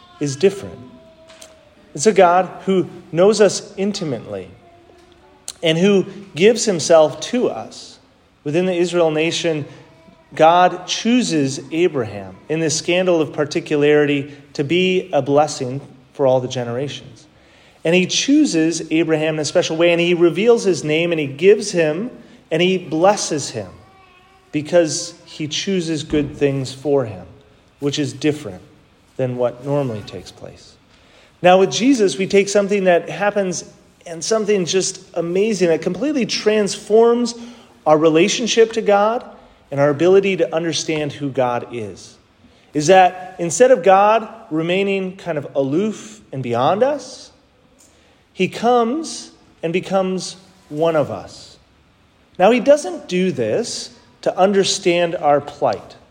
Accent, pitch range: American, 150-195 Hz